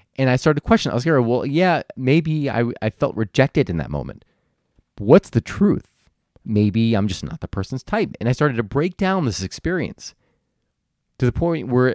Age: 30-49